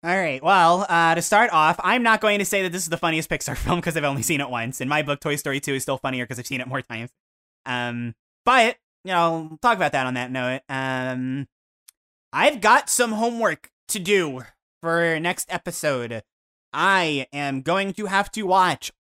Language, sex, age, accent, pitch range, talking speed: English, male, 20-39, American, 130-180 Hz, 205 wpm